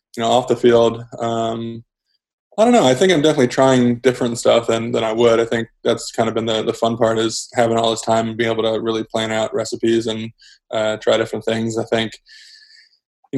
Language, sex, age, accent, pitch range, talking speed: English, male, 20-39, American, 110-115 Hz, 230 wpm